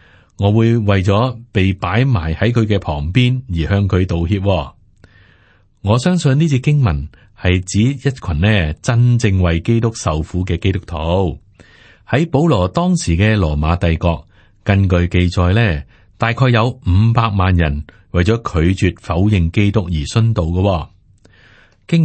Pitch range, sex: 85-110 Hz, male